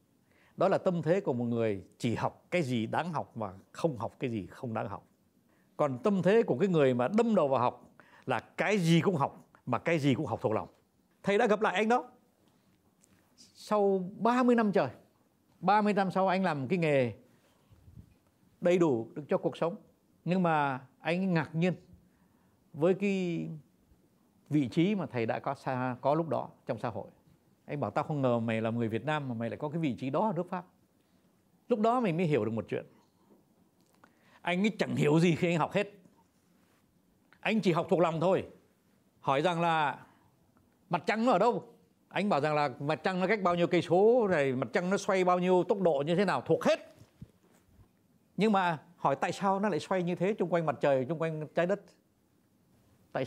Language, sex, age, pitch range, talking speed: Vietnamese, male, 60-79, 140-195 Hz, 205 wpm